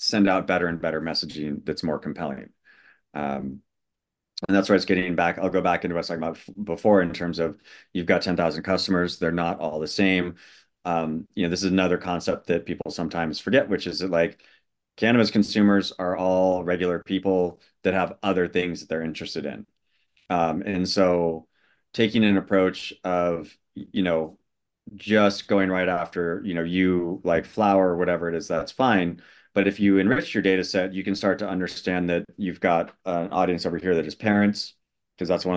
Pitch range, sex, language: 85-95 Hz, male, English